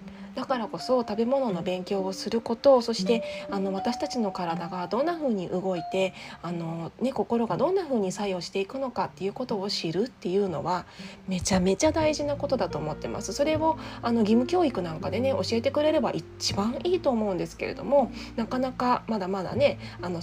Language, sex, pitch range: Japanese, female, 185-255 Hz